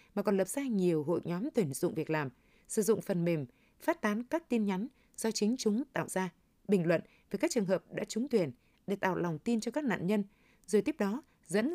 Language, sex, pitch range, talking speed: Vietnamese, female, 180-240 Hz, 235 wpm